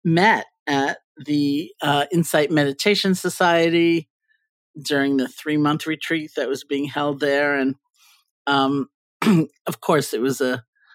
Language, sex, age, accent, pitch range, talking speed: English, male, 50-69, American, 135-165 Hz, 125 wpm